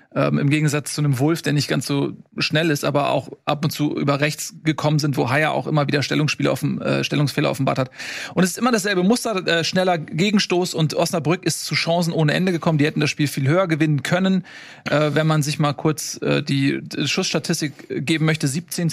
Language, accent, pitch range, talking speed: German, German, 145-170 Hz, 220 wpm